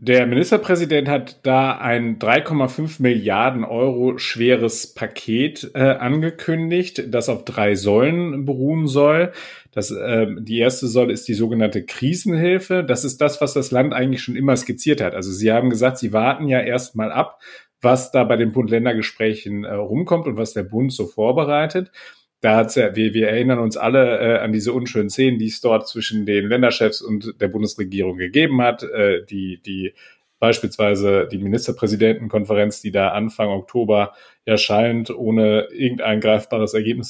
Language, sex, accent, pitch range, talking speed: German, male, German, 110-130 Hz, 160 wpm